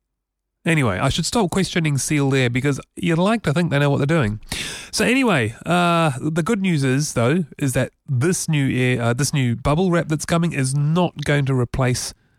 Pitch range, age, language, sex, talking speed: 115-155 Hz, 30-49, English, male, 205 wpm